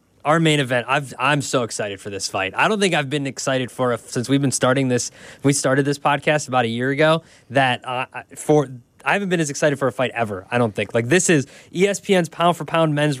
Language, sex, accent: English, male, American